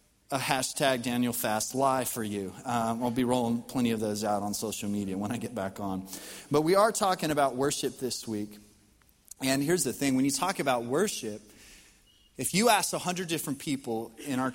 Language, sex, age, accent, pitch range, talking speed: English, male, 30-49, American, 125-160 Hz, 190 wpm